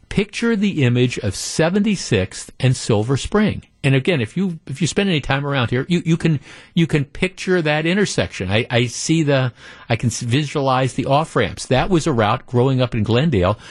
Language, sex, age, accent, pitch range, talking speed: English, male, 50-69, American, 110-150 Hz, 200 wpm